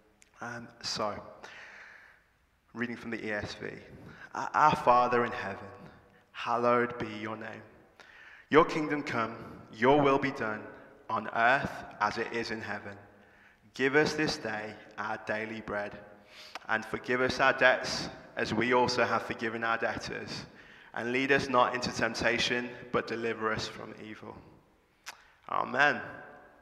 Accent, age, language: British, 20-39, English